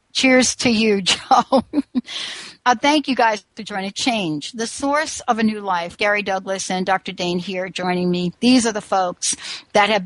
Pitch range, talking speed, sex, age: 185-225 Hz, 185 wpm, female, 60-79